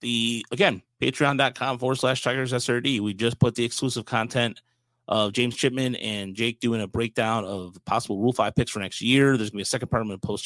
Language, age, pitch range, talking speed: English, 30-49, 110-130 Hz, 220 wpm